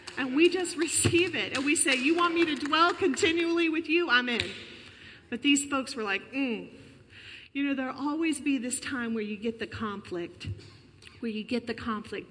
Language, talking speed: English, 200 wpm